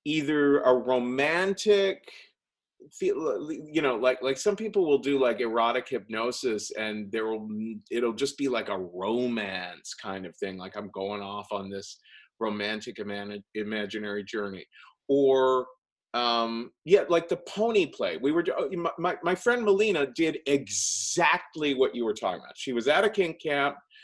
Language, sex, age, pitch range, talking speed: English, male, 40-59, 105-160 Hz, 155 wpm